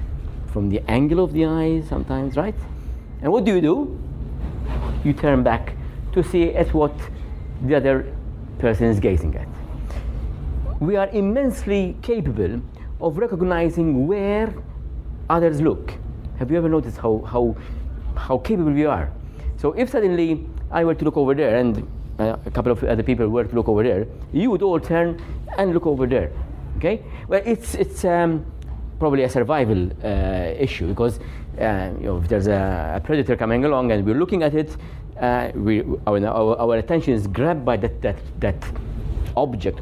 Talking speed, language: 170 wpm, English